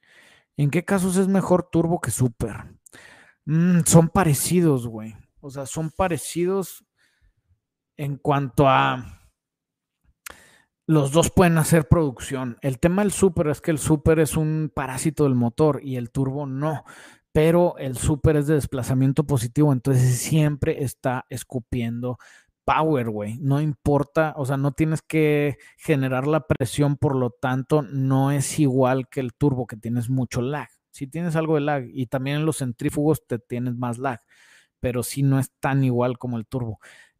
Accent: Mexican